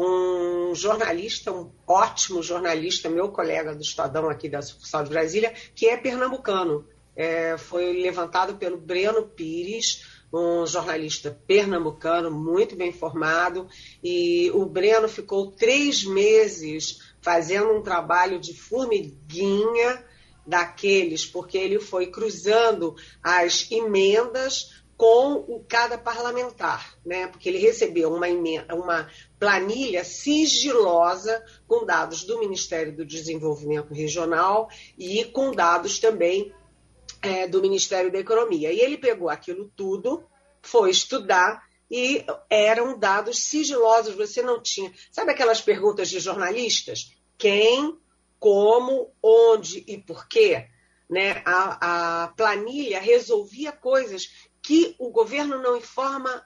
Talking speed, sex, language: 120 wpm, female, Portuguese